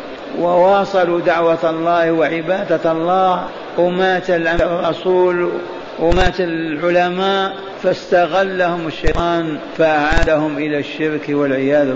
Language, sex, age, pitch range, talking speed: Arabic, male, 50-69, 150-180 Hz, 75 wpm